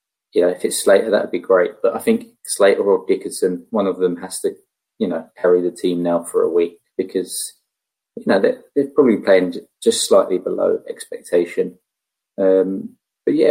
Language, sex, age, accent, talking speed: English, male, 20-39, British, 185 wpm